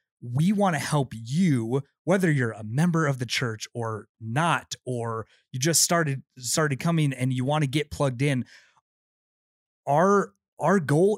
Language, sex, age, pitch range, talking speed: English, male, 30-49, 120-155 Hz, 160 wpm